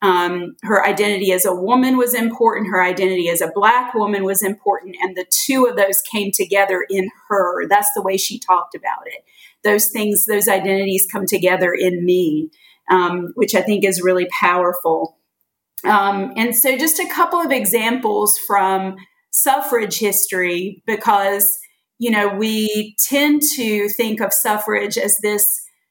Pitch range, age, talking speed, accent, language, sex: 200-250 Hz, 40-59, 160 wpm, American, English, female